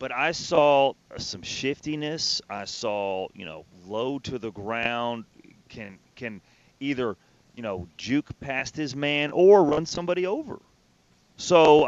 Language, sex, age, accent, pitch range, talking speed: English, male, 30-49, American, 110-140 Hz, 135 wpm